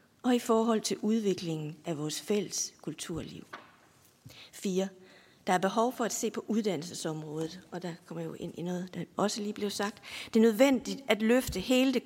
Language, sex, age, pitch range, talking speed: Danish, female, 50-69, 180-225 Hz, 190 wpm